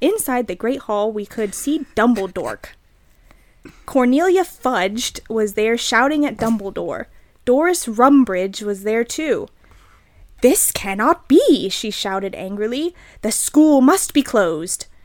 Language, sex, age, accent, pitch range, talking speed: English, female, 20-39, American, 215-280 Hz, 125 wpm